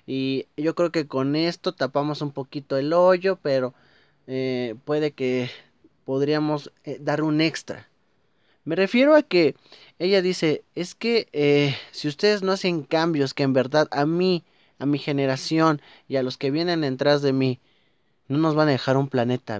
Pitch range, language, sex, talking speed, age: 135-180 Hz, Spanish, male, 175 wpm, 30-49